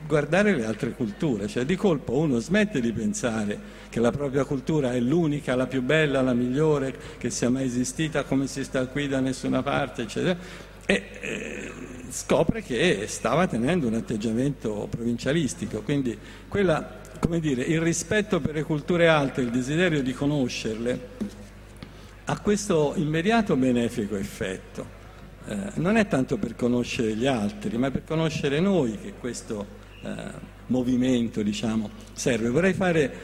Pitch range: 115-145 Hz